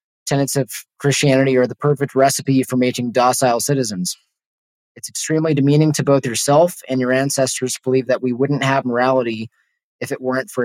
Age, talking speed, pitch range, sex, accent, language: 20-39, 170 wpm, 125-145 Hz, male, American, English